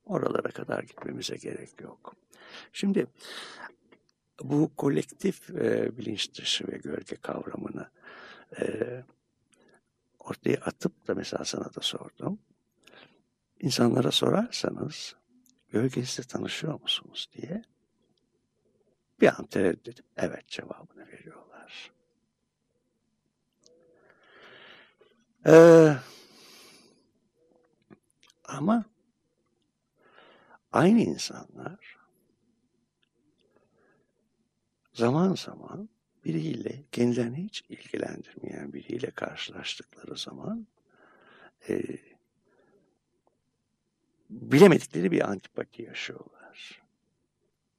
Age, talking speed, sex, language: 60-79, 65 wpm, male, Turkish